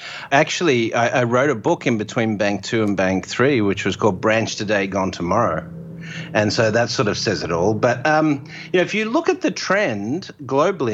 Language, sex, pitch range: English, male, 105-140 Hz